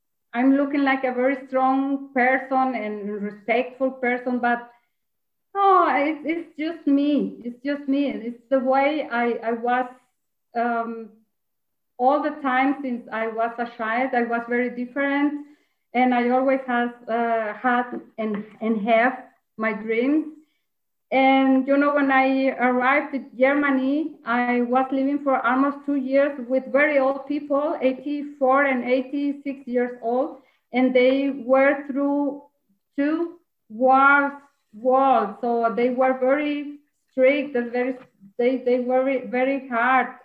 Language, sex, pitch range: English, female, 240-280 Hz